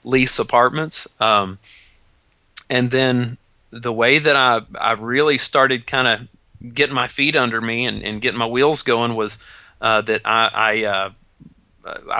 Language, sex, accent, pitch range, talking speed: English, male, American, 110-135 Hz, 155 wpm